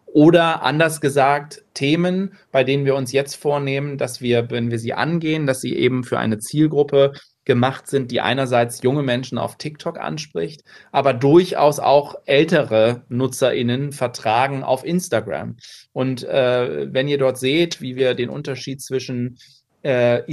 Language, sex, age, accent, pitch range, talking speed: German, male, 30-49, German, 125-150 Hz, 150 wpm